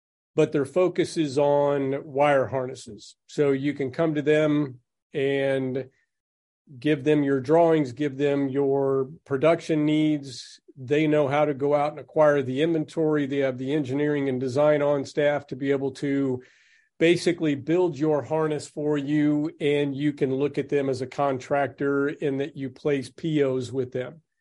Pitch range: 135-155 Hz